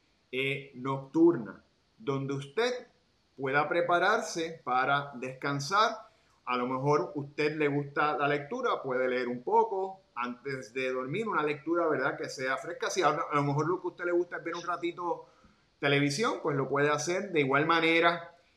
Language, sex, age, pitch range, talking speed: Spanish, male, 30-49, 135-170 Hz, 170 wpm